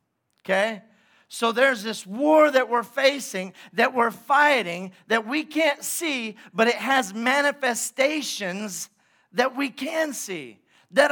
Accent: American